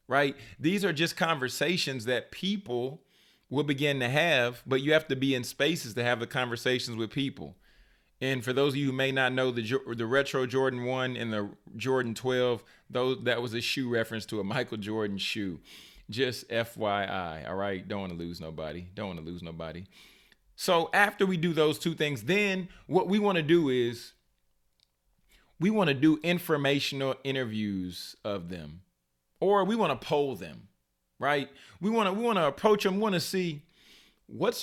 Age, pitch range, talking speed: 30-49, 120-160 Hz, 185 wpm